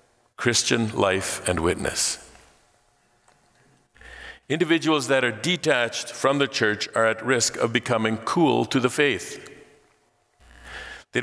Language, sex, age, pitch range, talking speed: English, male, 50-69, 110-140 Hz, 110 wpm